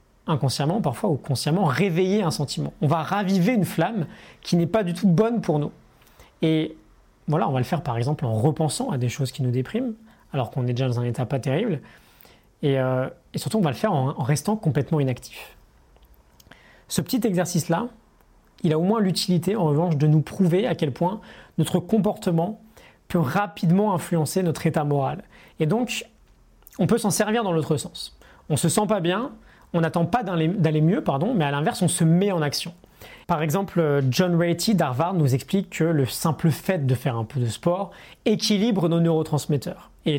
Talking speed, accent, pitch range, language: 195 wpm, French, 140-180 Hz, French